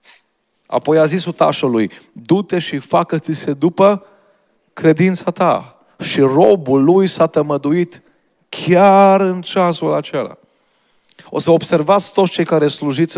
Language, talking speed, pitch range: Romanian, 120 wpm, 135-165 Hz